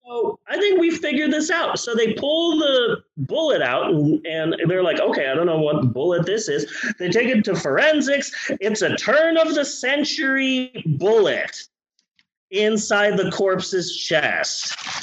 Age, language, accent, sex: 30-49, English, American, male